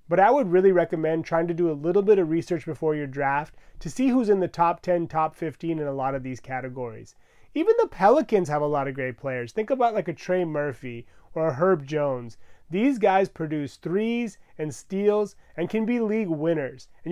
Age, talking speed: 30-49, 215 wpm